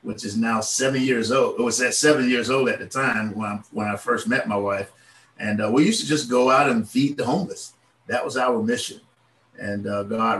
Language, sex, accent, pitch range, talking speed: English, male, American, 105-125 Hz, 240 wpm